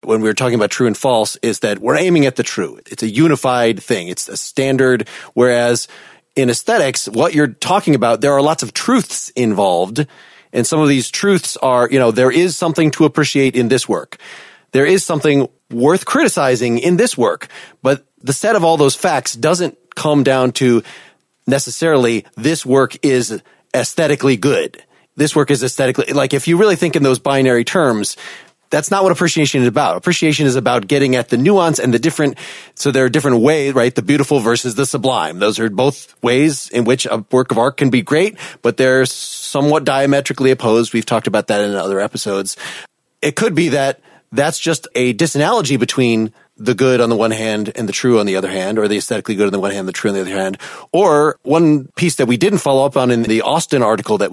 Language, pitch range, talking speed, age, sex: English, 120-150 Hz, 210 wpm, 30-49, male